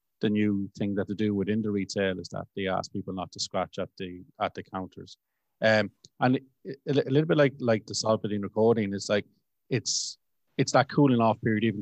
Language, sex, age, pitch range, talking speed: English, male, 30-49, 95-110 Hz, 215 wpm